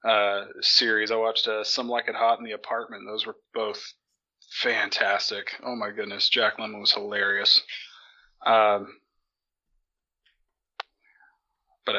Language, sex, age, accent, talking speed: English, male, 30-49, American, 125 wpm